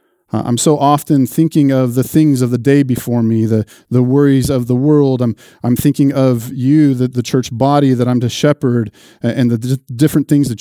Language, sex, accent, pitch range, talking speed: English, male, American, 120-145 Hz, 210 wpm